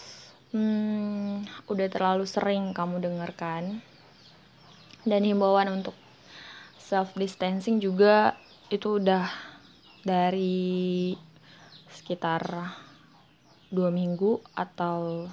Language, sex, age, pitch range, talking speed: Indonesian, female, 20-39, 170-195 Hz, 75 wpm